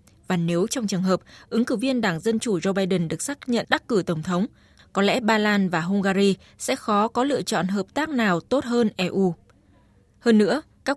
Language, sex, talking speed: Vietnamese, female, 220 wpm